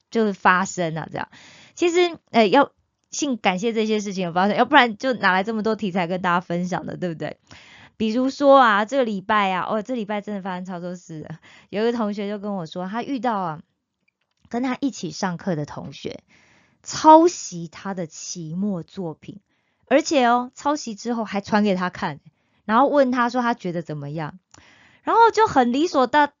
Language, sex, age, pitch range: Korean, female, 20-39, 185-260 Hz